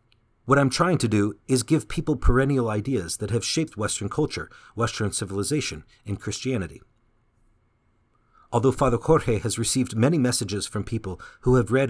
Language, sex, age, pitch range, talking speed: English, male, 40-59, 105-130 Hz, 155 wpm